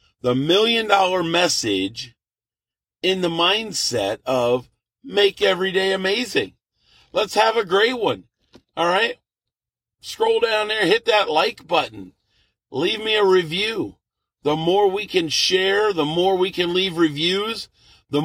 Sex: male